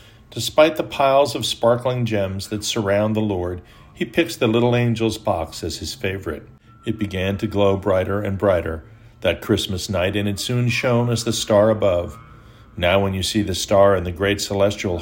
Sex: male